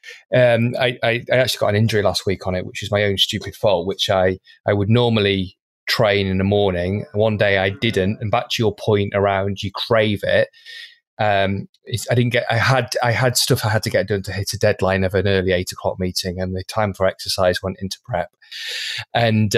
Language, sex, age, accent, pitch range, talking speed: English, male, 20-39, British, 100-120 Hz, 225 wpm